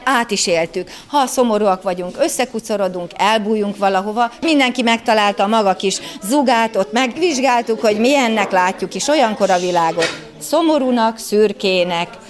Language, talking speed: Hungarian, 120 wpm